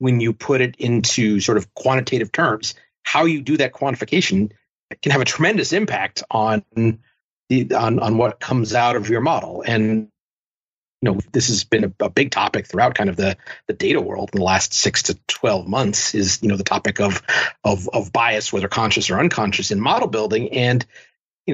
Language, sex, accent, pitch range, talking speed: English, male, American, 110-140 Hz, 200 wpm